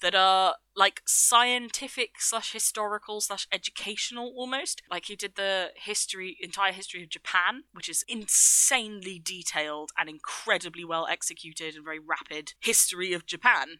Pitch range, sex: 165-205 Hz, female